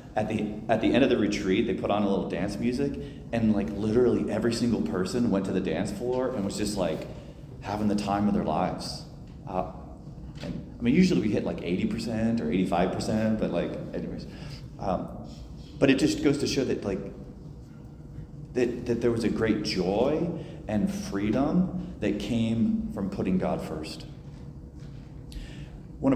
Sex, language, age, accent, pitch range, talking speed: male, English, 30-49, American, 100-125 Hz, 180 wpm